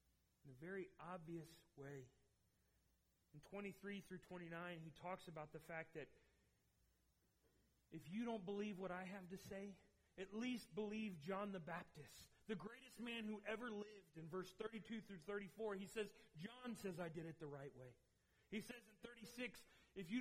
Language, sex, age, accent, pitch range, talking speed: English, male, 30-49, American, 165-230 Hz, 170 wpm